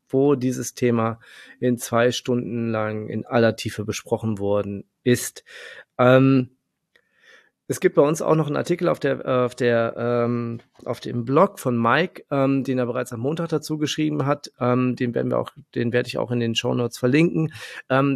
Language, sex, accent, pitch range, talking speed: German, male, German, 115-140 Hz, 160 wpm